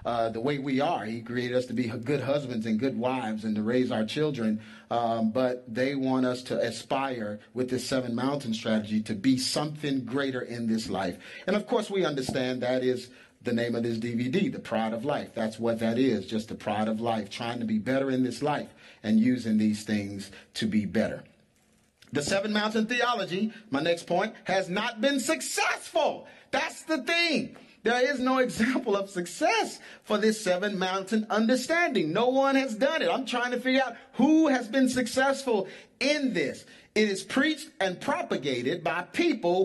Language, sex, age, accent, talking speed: English, male, 40-59, American, 190 wpm